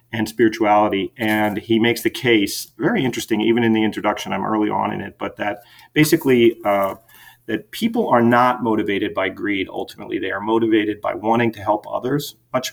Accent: American